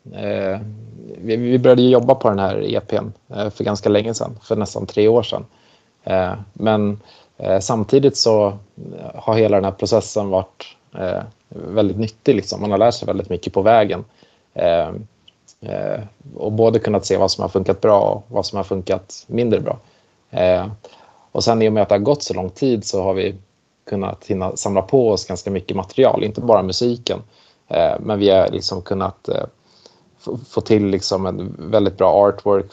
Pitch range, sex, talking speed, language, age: 100-115 Hz, male, 165 wpm, Swedish, 20-39